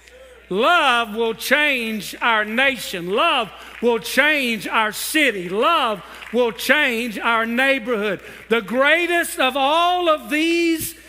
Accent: American